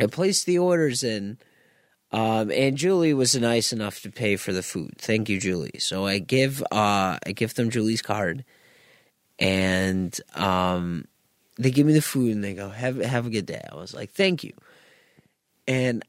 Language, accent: English, American